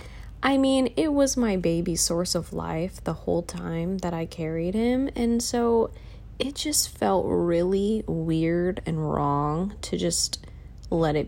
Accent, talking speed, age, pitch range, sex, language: American, 155 wpm, 20-39, 165-215 Hz, female, English